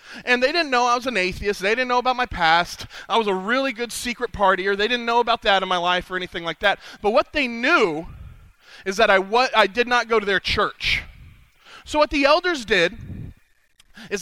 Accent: American